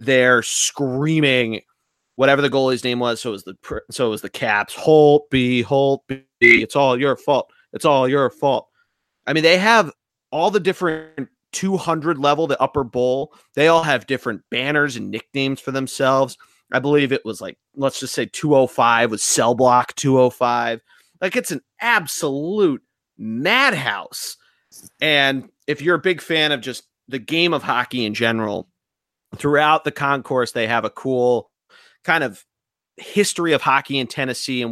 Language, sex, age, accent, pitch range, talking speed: English, male, 30-49, American, 120-150 Hz, 165 wpm